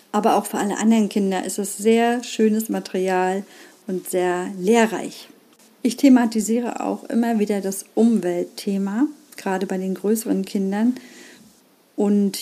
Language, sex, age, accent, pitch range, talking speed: German, female, 50-69, German, 195-255 Hz, 130 wpm